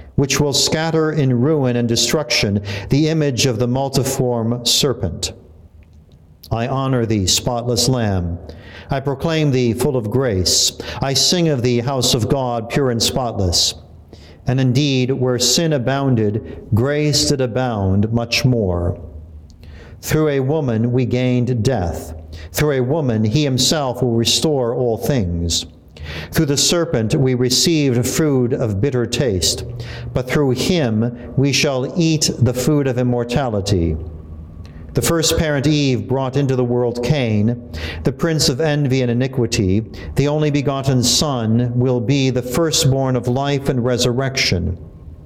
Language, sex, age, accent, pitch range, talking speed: English, male, 50-69, American, 100-135 Hz, 140 wpm